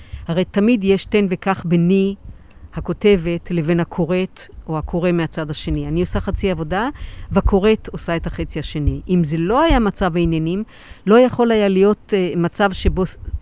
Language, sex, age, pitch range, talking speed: Hebrew, female, 50-69, 160-195 Hz, 150 wpm